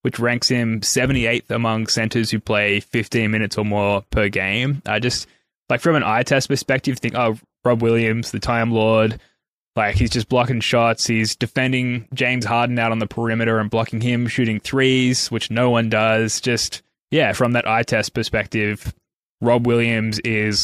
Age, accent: 10-29, Australian